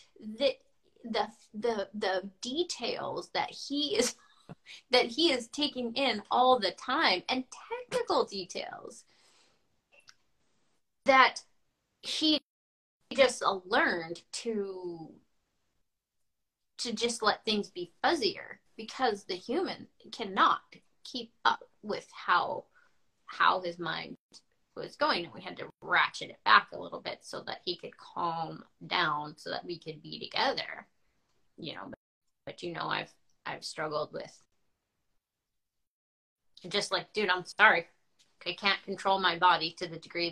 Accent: American